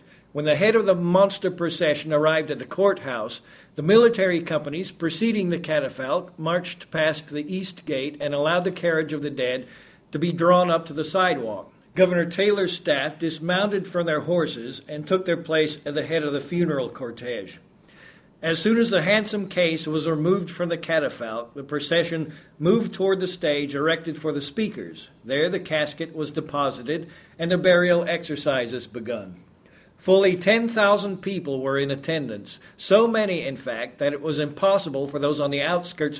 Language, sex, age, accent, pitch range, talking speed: English, male, 50-69, American, 150-185 Hz, 170 wpm